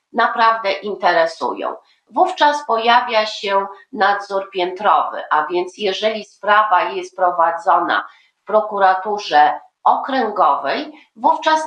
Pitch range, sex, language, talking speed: 180-225 Hz, female, Polish, 85 wpm